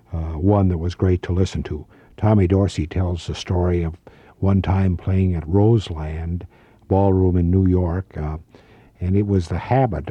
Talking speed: 170 wpm